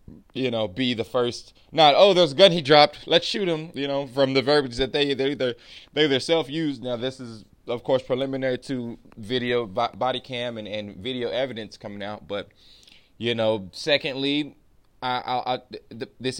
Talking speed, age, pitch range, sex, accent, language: 200 wpm, 20-39, 115-140 Hz, male, American, English